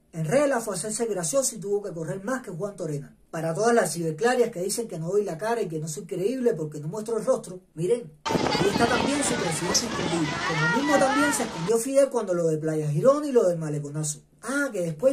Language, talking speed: Spanish, 225 wpm